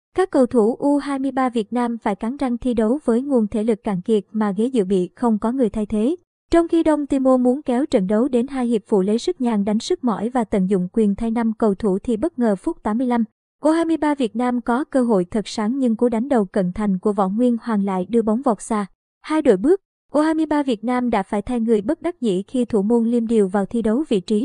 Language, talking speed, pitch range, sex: Vietnamese, 255 wpm, 215-255 Hz, male